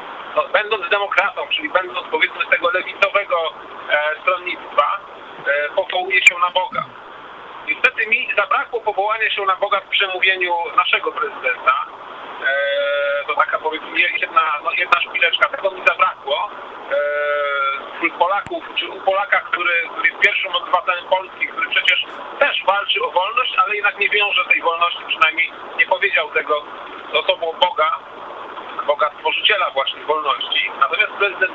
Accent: native